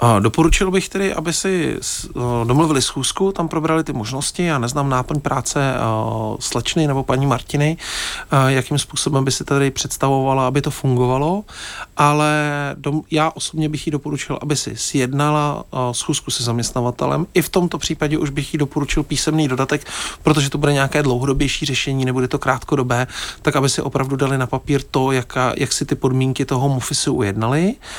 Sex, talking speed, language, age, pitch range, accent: male, 160 wpm, Czech, 40-59, 130-155 Hz, native